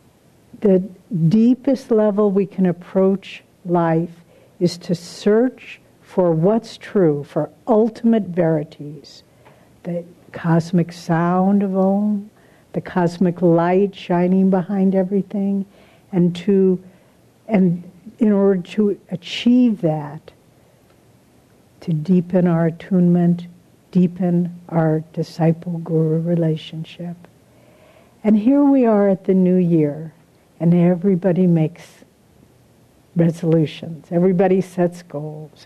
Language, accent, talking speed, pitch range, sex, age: English, American, 100 wpm, 175-215 Hz, female, 60-79